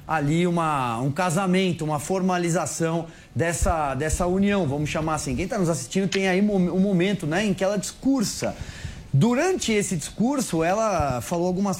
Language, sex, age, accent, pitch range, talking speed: Portuguese, male, 30-49, Brazilian, 155-200 Hz, 160 wpm